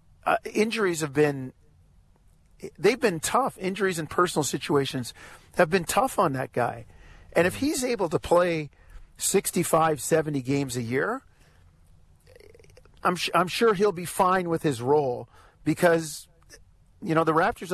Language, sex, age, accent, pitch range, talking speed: English, male, 50-69, American, 130-175 Hz, 150 wpm